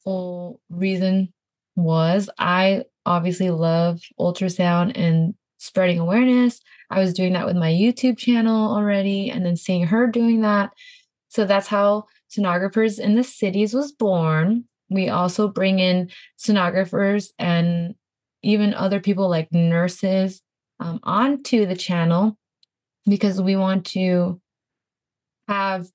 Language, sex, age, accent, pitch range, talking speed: English, female, 20-39, American, 175-210 Hz, 125 wpm